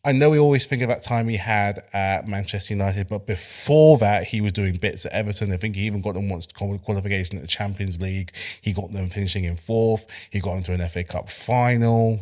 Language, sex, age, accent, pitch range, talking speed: English, male, 20-39, British, 95-110 Hz, 230 wpm